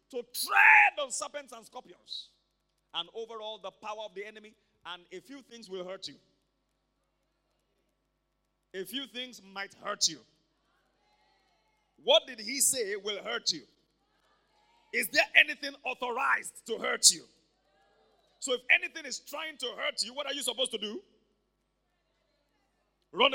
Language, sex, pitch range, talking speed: English, male, 205-290 Hz, 145 wpm